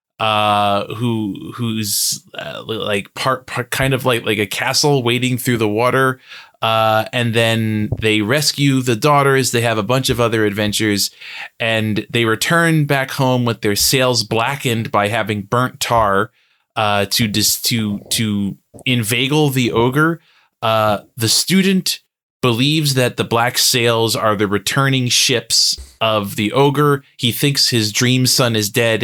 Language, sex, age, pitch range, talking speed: English, male, 20-39, 105-130 Hz, 155 wpm